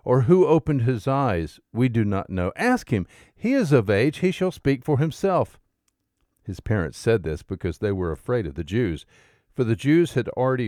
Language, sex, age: English, male, 50-69